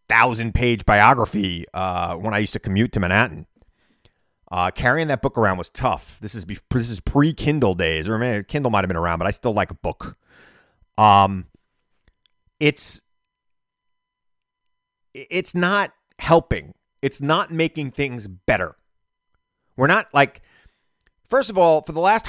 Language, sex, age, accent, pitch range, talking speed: English, male, 30-49, American, 105-155 Hz, 155 wpm